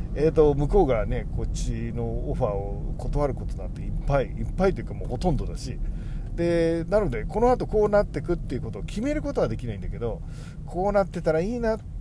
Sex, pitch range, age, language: male, 120-200 Hz, 40-59, Japanese